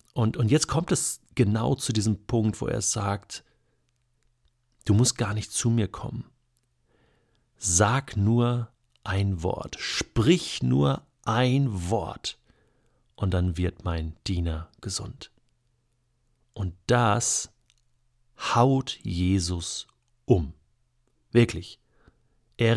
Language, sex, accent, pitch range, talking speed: German, male, German, 100-125 Hz, 105 wpm